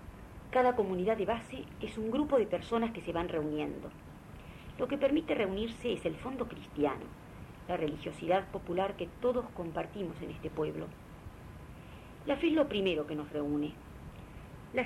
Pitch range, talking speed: 155-215 Hz, 160 wpm